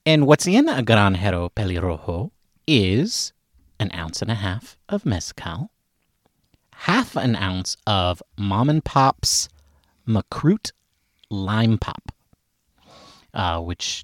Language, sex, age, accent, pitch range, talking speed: English, male, 30-49, American, 95-130 Hz, 110 wpm